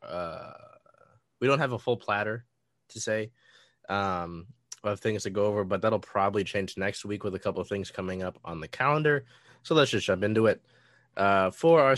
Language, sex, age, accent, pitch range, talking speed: English, male, 20-39, American, 90-120 Hz, 200 wpm